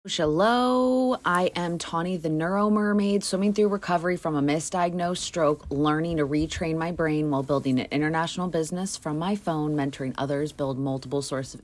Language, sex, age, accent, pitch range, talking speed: English, female, 30-49, American, 140-180 Hz, 170 wpm